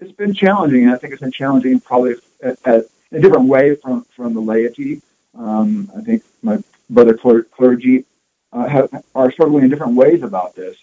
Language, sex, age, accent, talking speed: English, male, 50-69, American, 185 wpm